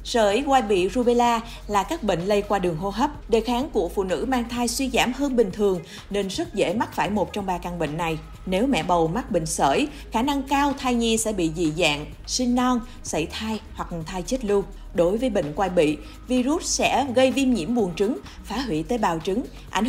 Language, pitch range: Vietnamese, 175-245 Hz